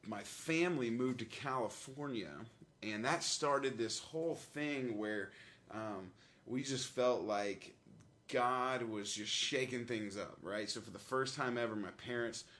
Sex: male